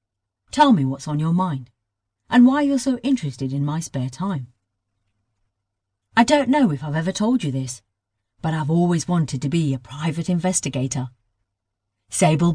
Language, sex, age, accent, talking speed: English, female, 40-59, British, 165 wpm